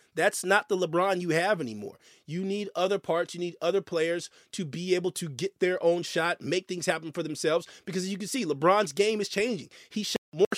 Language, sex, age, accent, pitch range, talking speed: English, male, 30-49, American, 160-210 Hz, 225 wpm